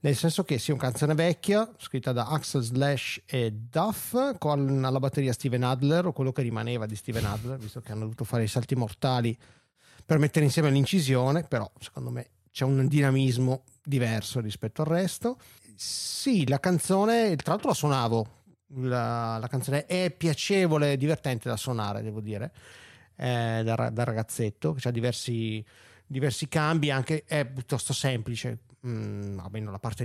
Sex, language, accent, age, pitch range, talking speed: male, Italian, native, 30-49, 120-150 Hz, 160 wpm